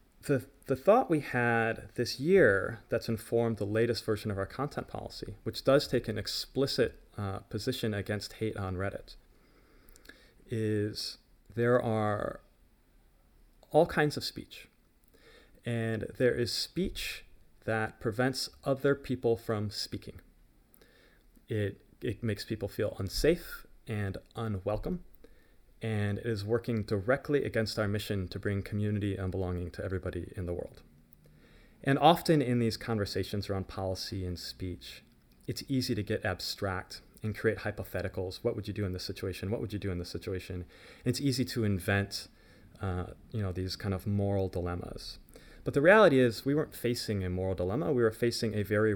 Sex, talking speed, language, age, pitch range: male, 155 wpm, English, 30-49, 95-120 Hz